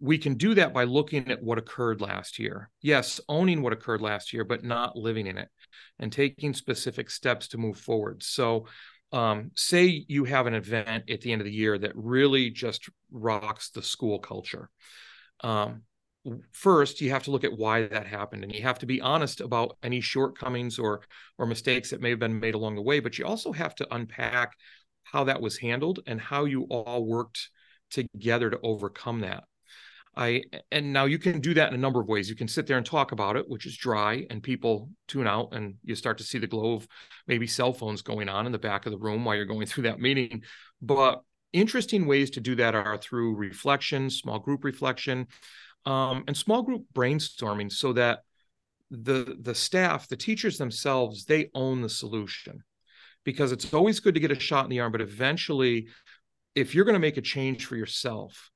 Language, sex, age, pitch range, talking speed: English, male, 40-59, 110-135 Hz, 205 wpm